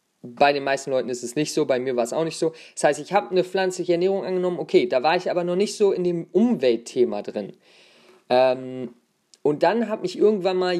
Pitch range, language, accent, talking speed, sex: 155-200 Hz, German, German, 230 wpm, male